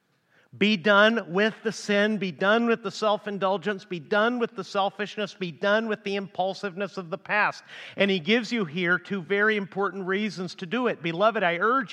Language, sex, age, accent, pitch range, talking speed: English, male, 40-59, American, 185-225 Hz, 190 wpm